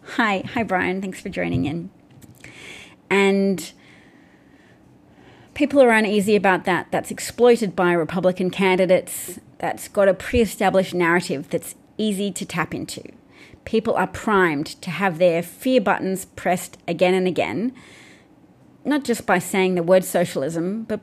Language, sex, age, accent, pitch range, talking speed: English, female, 30-49, Australian, 175-210 Hz, 135 wpm